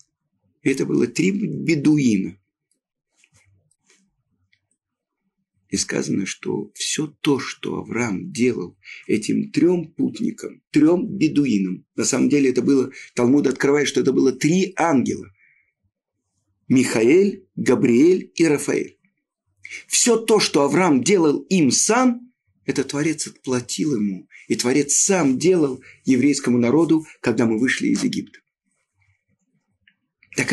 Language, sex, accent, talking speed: Russian, male, native, 110 wpm